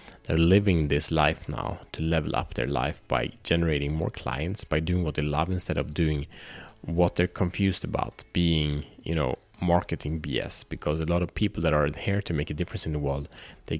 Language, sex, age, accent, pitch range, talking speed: Swedish, male, 30-49, Norwegian, 75-90 Hz, 205 wpm